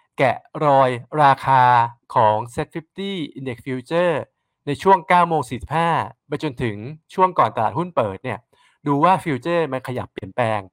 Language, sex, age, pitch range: Thai, male, 20-39, 115-155 Hz